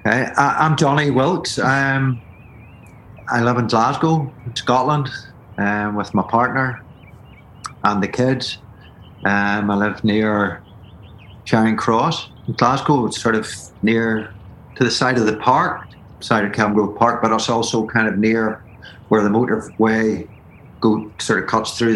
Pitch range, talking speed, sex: 105-125 Hz, 150 wpm, male